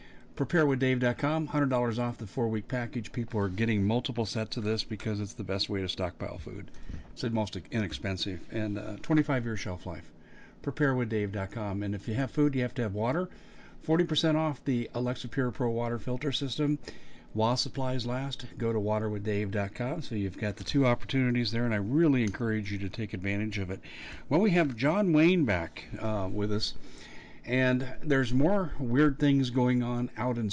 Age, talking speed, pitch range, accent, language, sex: 50-69, 180 wpm, 105-145 Hz, American, English, male